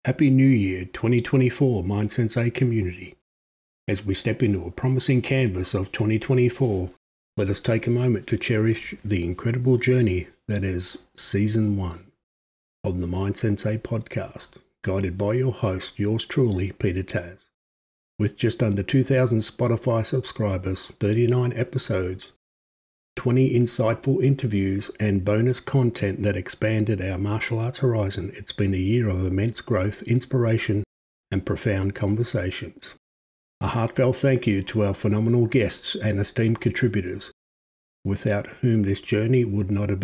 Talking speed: 140 wpm